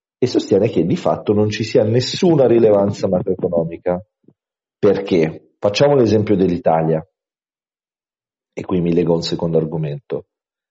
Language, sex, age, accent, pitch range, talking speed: Italian, male, 40-59, native, 85-115 Hz, 125 wpm